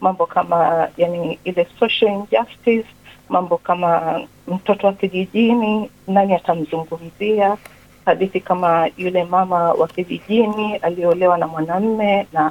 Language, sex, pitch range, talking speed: Swahili, female, 175-220 Hz, 110 wpm